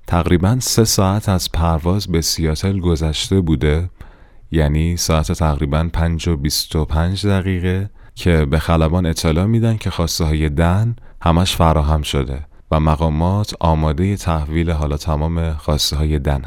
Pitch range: 80-100 Hz